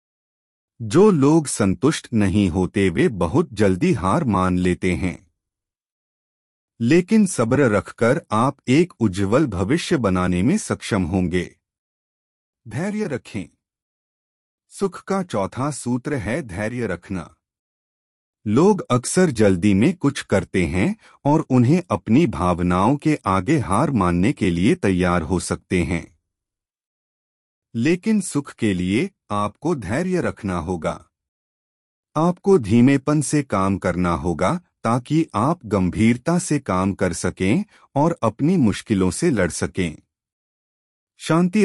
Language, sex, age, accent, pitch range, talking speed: Hindi, male, 40-59, native, 90-145 Hz, 115 wpm